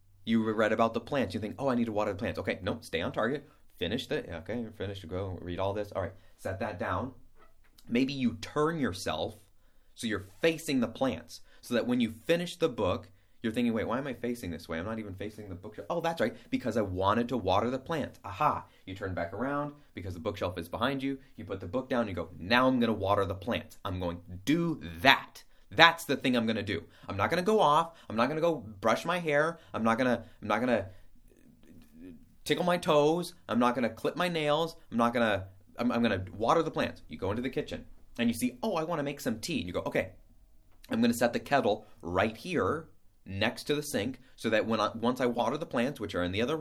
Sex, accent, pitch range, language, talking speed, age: male, American, 100-155 Hz, English, 240 wpm, 30-49